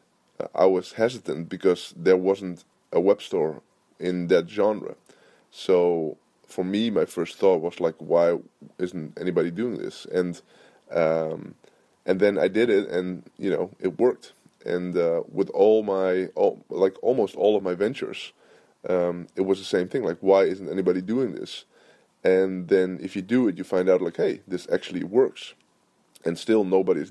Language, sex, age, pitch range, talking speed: English, male, 20-39, 90-120 Hz, 175 wpm